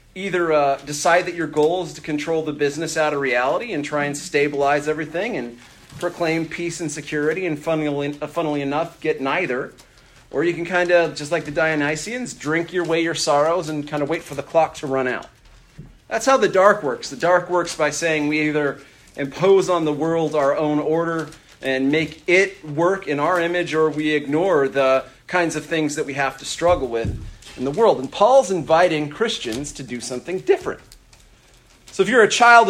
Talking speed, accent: 200 wpm, American